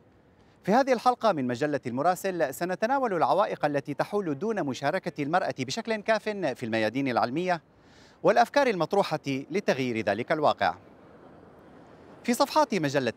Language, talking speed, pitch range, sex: Arabic, 120 wpm, 145-220 Hz, male